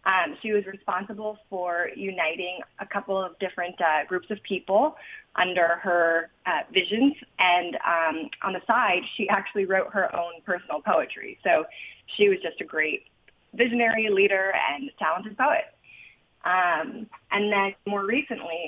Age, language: 20-39, English